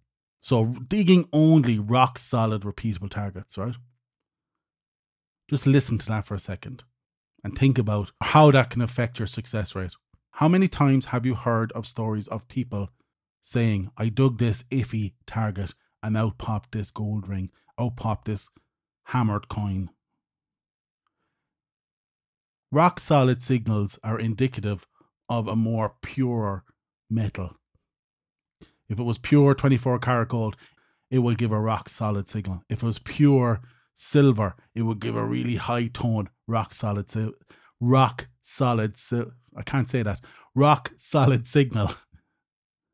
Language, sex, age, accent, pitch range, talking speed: English, male, 30-49, Irish, 105-130 Hz, 140 wpm